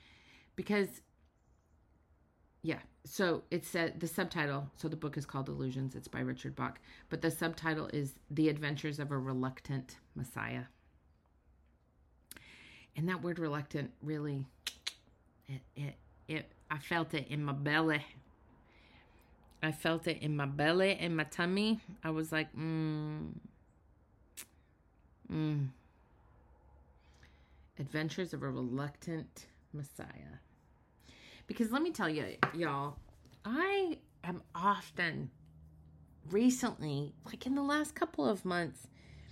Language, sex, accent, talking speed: English, female, American, 120 wpm